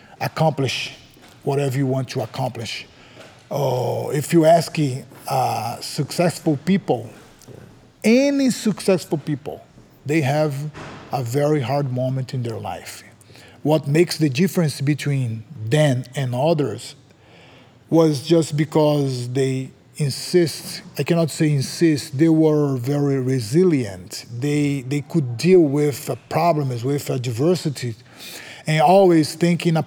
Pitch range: 130-165 Hz